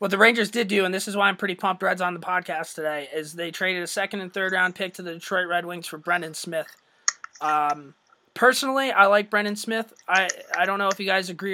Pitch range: 170-200 Hz